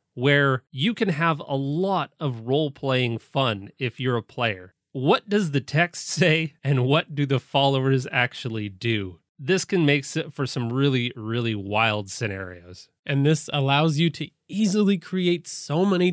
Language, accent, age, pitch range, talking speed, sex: English, American, 30-49, 125-160 Hz, 165 wpm, male